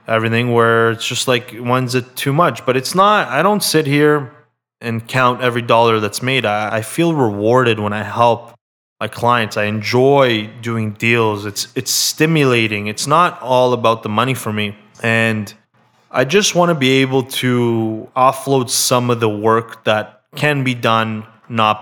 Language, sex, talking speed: English, male, 175 wpm